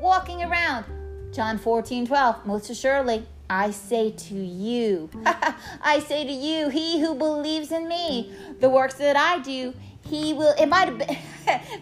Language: English